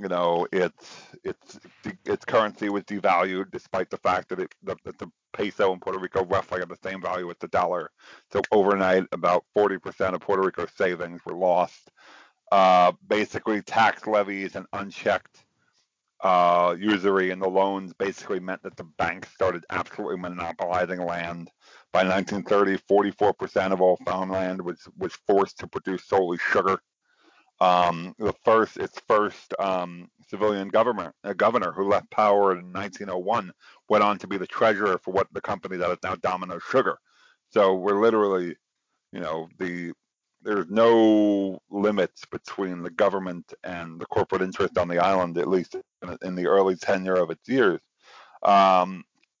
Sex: male